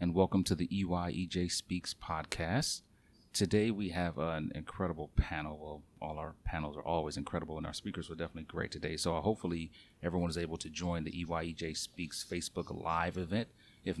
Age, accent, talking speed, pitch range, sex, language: 40-59, American, 175 wpm, 80-100 Hz, male, English